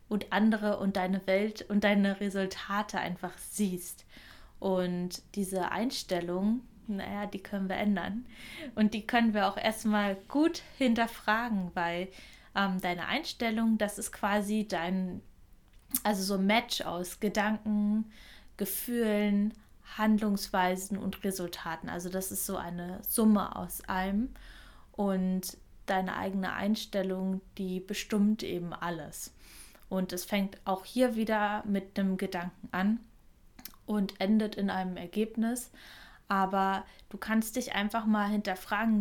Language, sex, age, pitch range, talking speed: German, female, 20-39, 190-220 Hz, 125 wpm